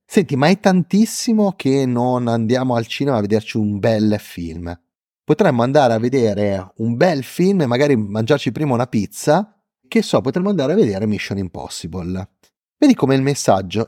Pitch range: 100-160 Hz